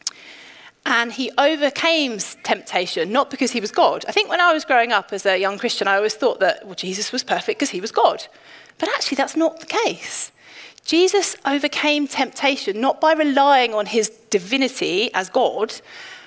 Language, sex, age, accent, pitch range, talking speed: English, female, 30-49, British, 215-300 Hz, 175 wpm